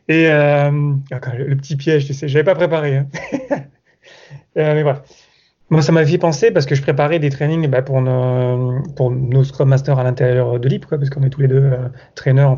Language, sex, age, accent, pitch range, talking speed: French, male, 30-49, French, 135-175 Hz, 220 wpm